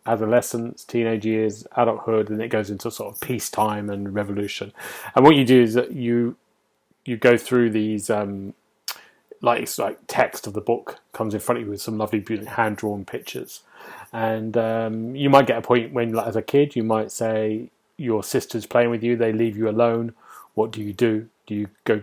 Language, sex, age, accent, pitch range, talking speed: English, male, 30-49, British, 105-120 Hz, 205 wpm